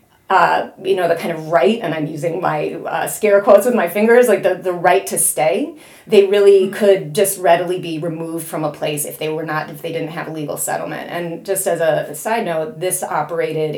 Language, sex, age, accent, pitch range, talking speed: English, female, 30-49, American, 155-190 Hz, 230 wpm